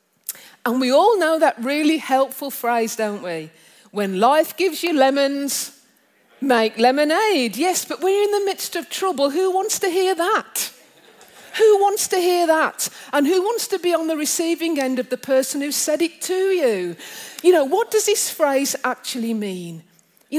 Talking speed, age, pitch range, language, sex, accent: 180 wpm, 40-59, 230-320 Hz, English, female, British